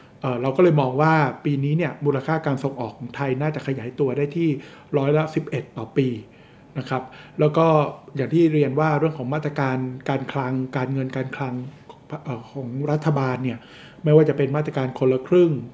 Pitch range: 130-155 Hz